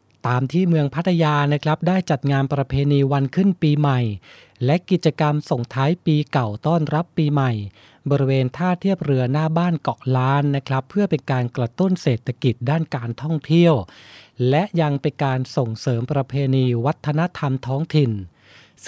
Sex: male